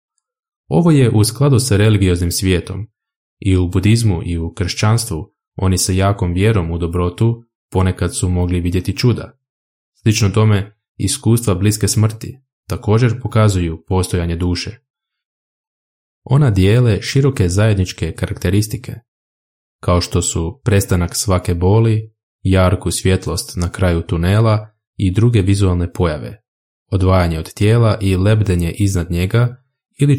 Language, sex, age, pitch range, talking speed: Croatian, male, 20-39, 90-115 Hz, 120 wpm